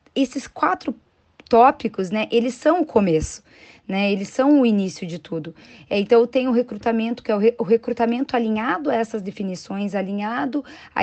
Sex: female